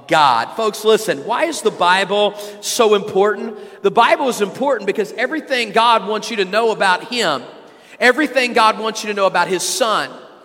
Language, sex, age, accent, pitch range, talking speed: English, male, 40-59, American, 195-240 Hz, 180 wpm